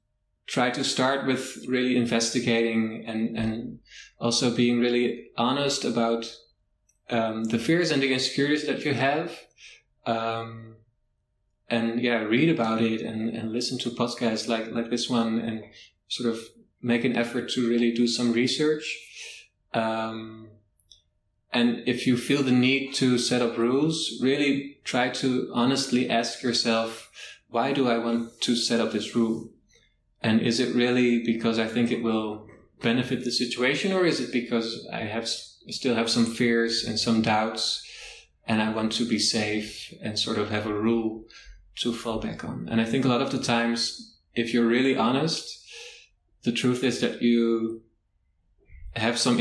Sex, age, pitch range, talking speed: male, 20-39, 110-125 Hz, 165 wpm